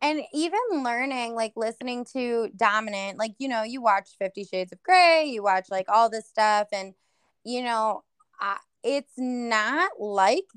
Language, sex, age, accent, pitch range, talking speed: English, female, 20-39, American, 205-260 Hz, 165 wpm